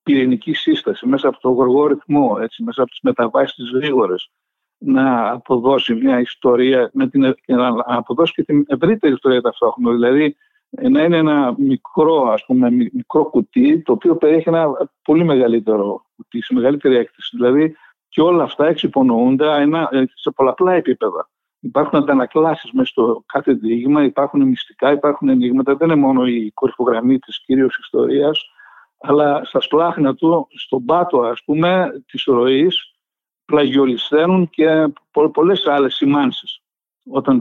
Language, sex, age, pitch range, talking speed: Greek, male, 60-79, 130-170 Hz, 140 wpm